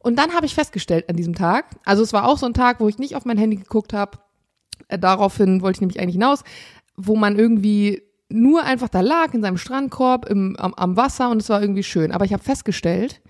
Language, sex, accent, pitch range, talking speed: German, female, German, 200-255 Hz, 235 wpm